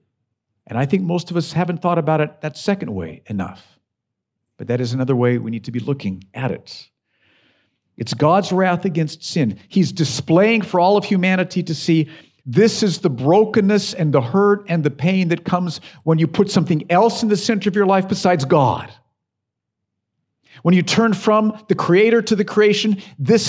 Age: 50-69